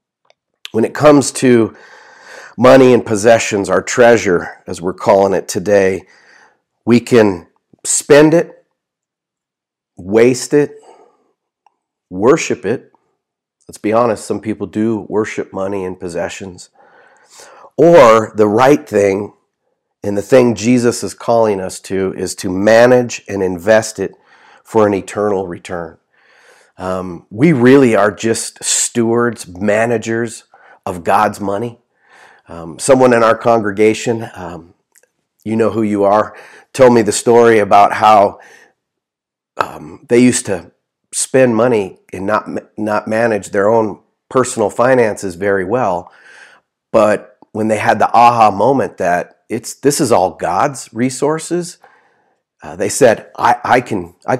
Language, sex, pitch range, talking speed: English, male, 100-120 Hz, 130 wpm